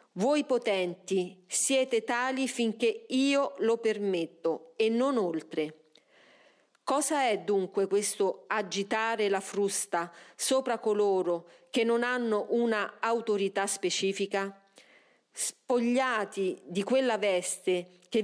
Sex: female